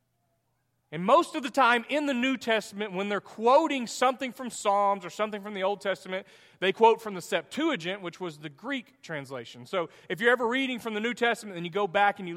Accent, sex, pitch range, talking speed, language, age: American, male, 180-225 Hz, 225 wpm, English, 40-59